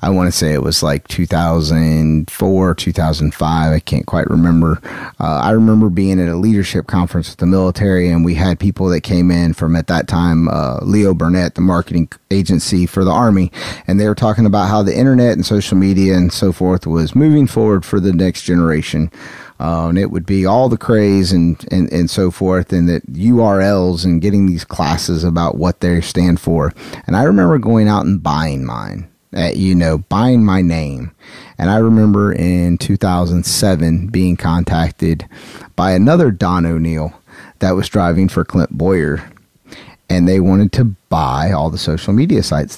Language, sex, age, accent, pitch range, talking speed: English, male, 30-49, American, 80-100 Hz, 180 wpm